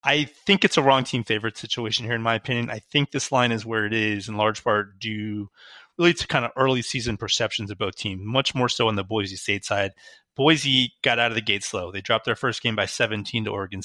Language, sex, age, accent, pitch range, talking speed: English, male, 30-49, American, 110-130 Hz, 250 wpm